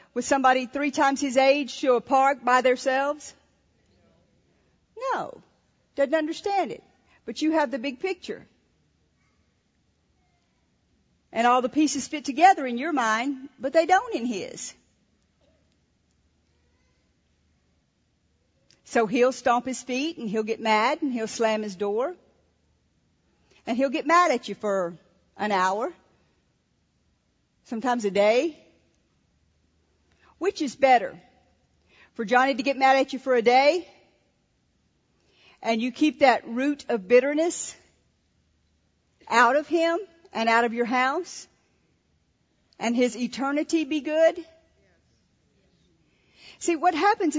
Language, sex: English, female